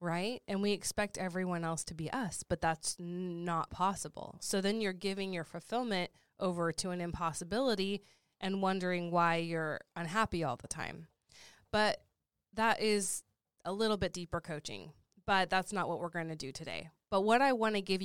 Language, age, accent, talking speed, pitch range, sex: English, 20-39, American, 180 wpm, 170-195 Hz, female